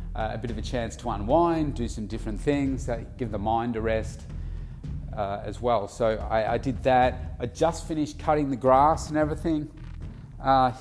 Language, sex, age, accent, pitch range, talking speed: English, male, 30-49, Australian, 110-140 Hz, 195 wpm